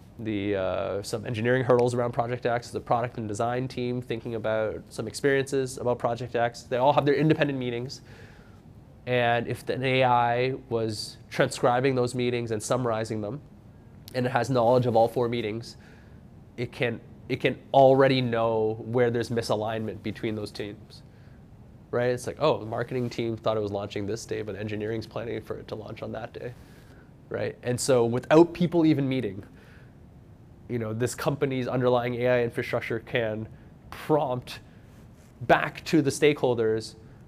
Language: English